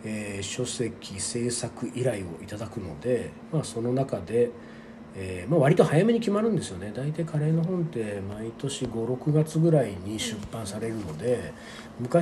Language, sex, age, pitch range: Japanese, male, 40-59, 105-155 Hz